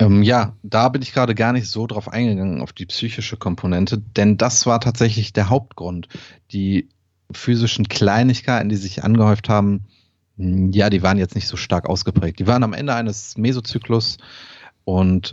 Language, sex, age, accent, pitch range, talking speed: German, male, 30-49, German, 95-115 Hz, 165 wpm